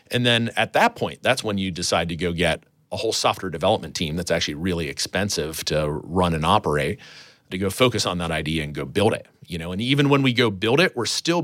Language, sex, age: English, male, 40-59